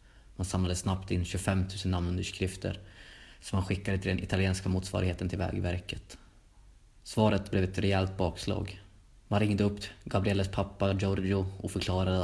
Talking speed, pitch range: 140 wpm, 95-100 Hz